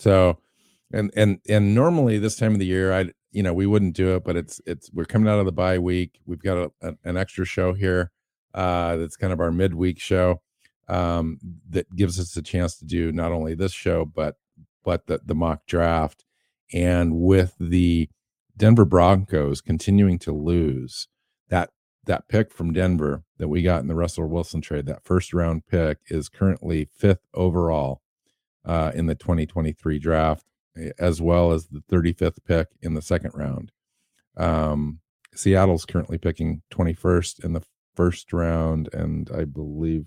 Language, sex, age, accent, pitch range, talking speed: English, male, 50-69, American, 80-90 Hz, 170 wpm